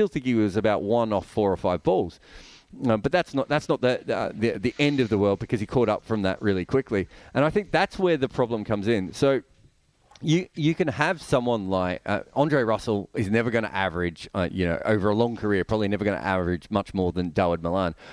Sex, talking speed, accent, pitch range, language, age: male, 240 wpm, Australian, 105-135 Hz, English, 30-49